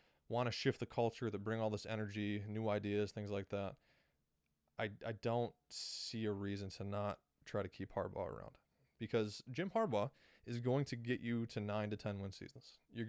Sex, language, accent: male, English, American